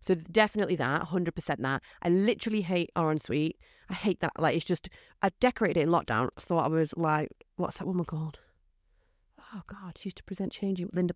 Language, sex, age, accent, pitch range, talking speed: English, female, 30-49, British, 155-195 Hz, 210 wpm